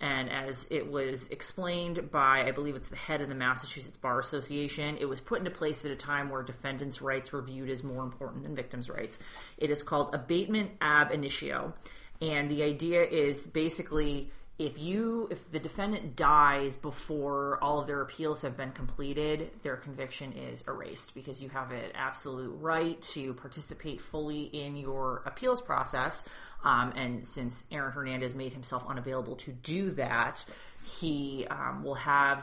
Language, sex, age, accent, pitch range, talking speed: English, female, 30-49, American, 130-150 Hz, 170 wpm